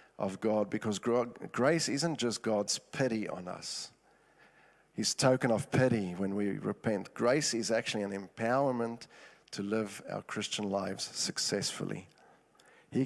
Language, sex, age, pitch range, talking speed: English, male, 50-69, 105-135 Hz, 135 wpm